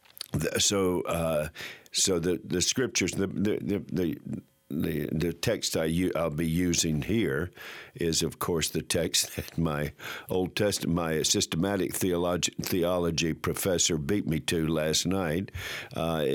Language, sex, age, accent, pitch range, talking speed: English, male, 60-79, American, 75-95 Hz, 140 wpm